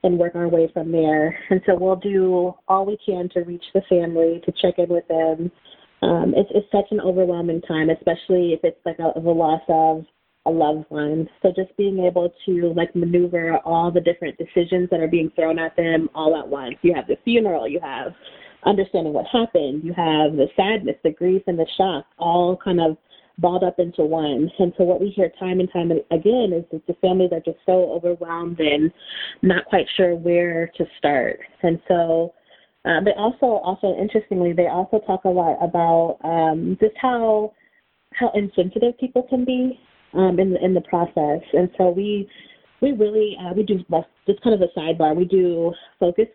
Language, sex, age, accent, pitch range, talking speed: English, female, 30-49, American, 170-195 Hz, 195 wpm